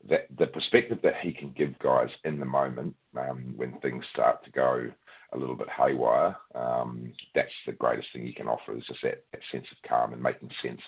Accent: Australian